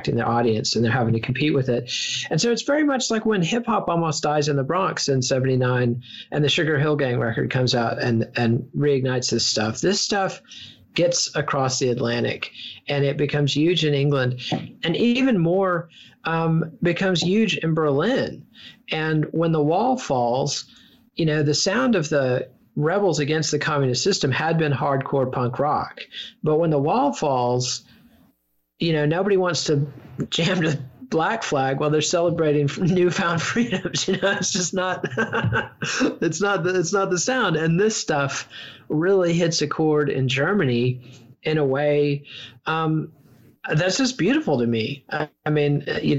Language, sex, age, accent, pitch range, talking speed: English, male, 40-59, American, 130-170 Hz, 170 wpm